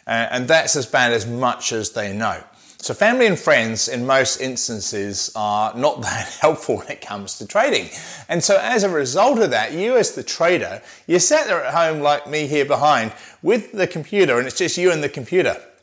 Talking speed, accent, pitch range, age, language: 210 wpm, British, 120-160 Hz, 30-49, English